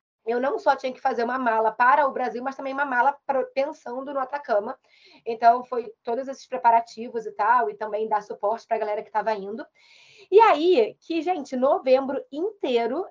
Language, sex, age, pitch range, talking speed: Portuguese, female, 20-39, 230-290 Hz, 190 wpm